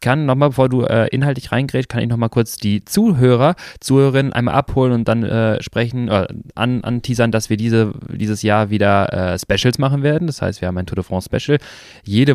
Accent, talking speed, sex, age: German, 220 wpm, male, 20-39